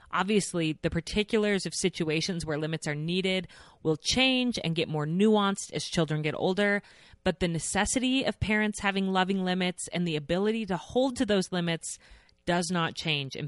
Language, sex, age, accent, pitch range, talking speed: English, female, 30-49, American, 155-205 Hz, 175 wpm